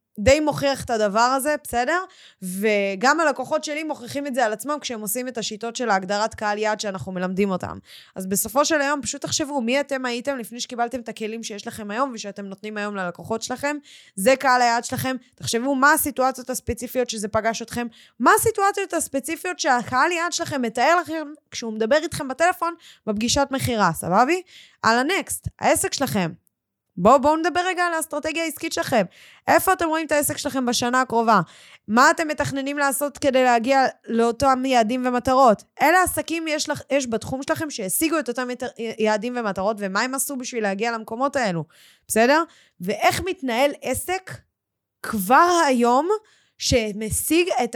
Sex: female